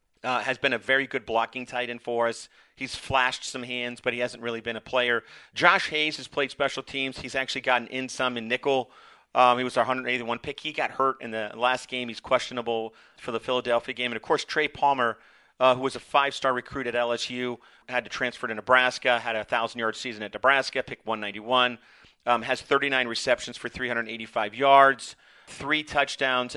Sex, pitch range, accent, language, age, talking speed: male, 120-135 Hz, American, English, 40-59, 200 wpm